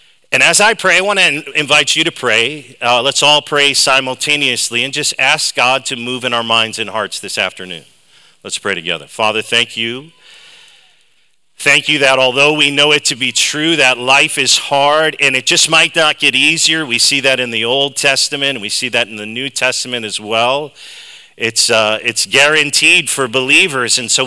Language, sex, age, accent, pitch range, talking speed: English, male, 40-59, American, 125-155 Hz, 200 wpm